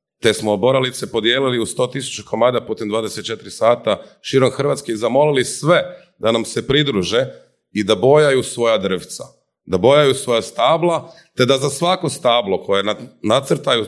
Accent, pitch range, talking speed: native, 105-135 Hz, 150 wpm